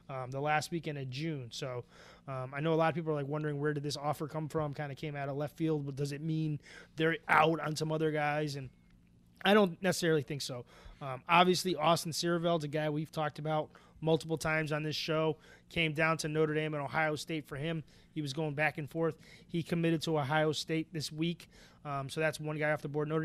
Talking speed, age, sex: 235 wpm, 20-39, male